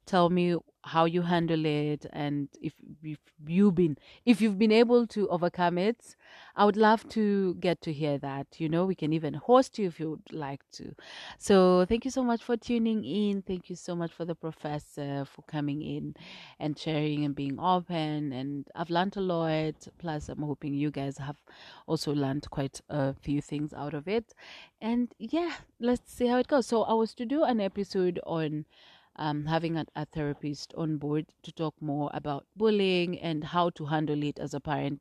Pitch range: 150-205 Hz